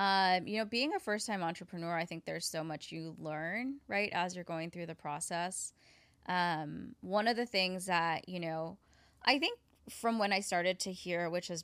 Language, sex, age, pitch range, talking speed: English, female, 10-29, 170-220 Hz, 205 wpm